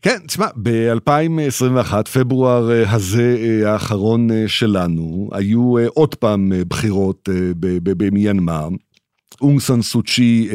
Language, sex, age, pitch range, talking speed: Hebrew, male, 50-69, 100-125 Hz, 80 wpm